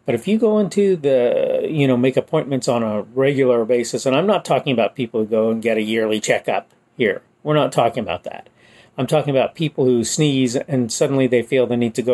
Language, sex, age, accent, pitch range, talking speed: English, male, 40-59, American, 120-160 Hz, 230 wpm